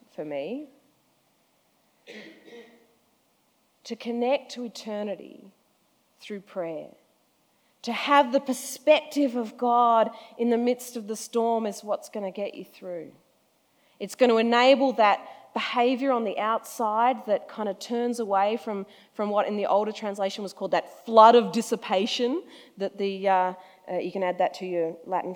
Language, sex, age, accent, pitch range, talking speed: English, female, 40-59, Australian, 180-230 Hz, 155 wpm